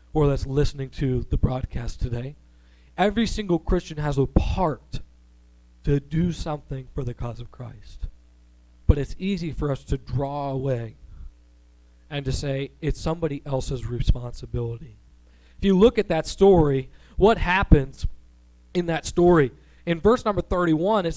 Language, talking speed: English, 145 wpm